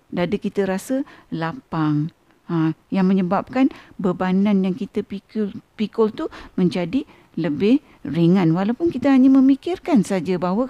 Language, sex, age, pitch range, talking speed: Malay, female, 50-69, 185-255 Hz, 125 wpm